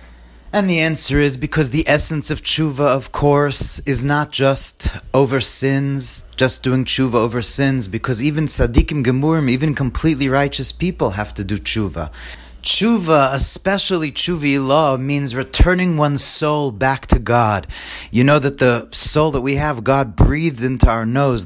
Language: English